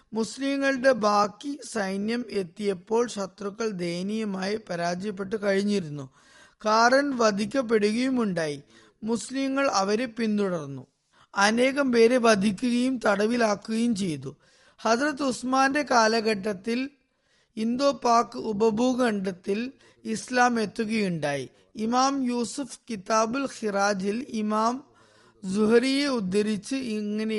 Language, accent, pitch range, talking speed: Malayalam, native, 205-245 Hz, 70 wpm